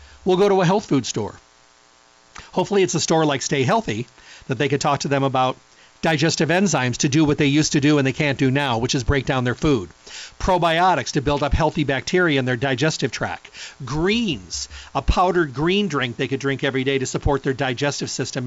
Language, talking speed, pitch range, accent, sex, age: English, 215 wpm, 130-165 Hz, American, male, 40-59